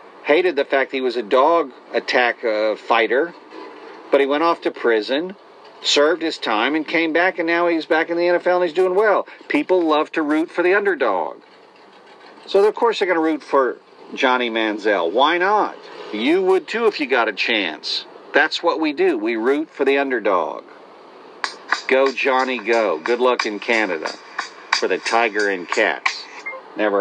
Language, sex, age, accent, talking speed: English, male, 50-69, American, 185 wpm